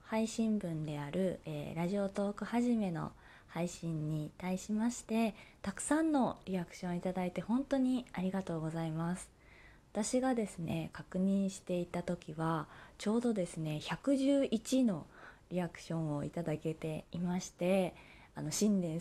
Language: Japanese